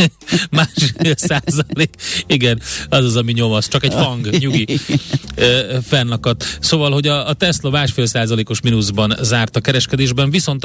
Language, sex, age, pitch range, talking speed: Hungarian, male, 30-49, 105-135 Hz, 130 wpm